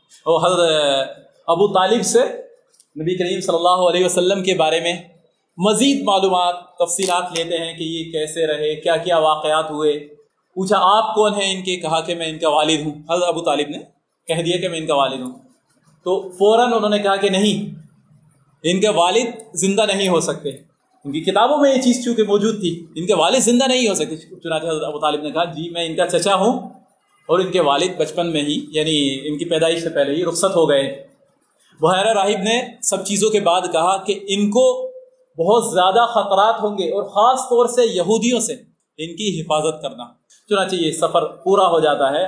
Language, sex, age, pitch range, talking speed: Urdu, male, 30-49, 165-220 Hz, 205 wpm